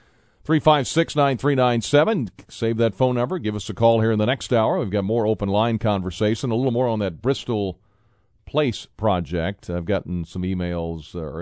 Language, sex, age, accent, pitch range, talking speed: English, male, 40-59, American, 95-115 Hz, 205 wpm